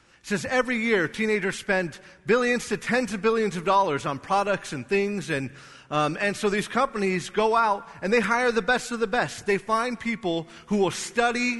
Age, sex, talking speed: 40-59, male, 200 wpm